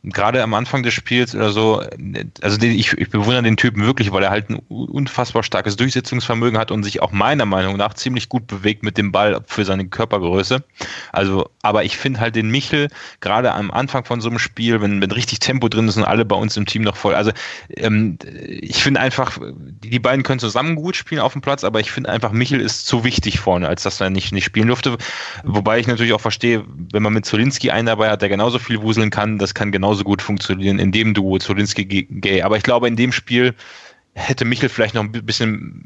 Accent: German